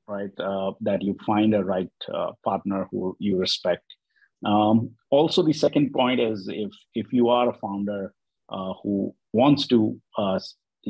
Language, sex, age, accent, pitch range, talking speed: English, male, 50-69, Indian, 95-115 Hz, 160 wpm